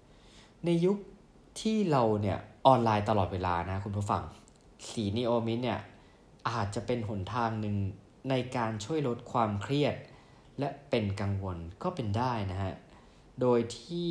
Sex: male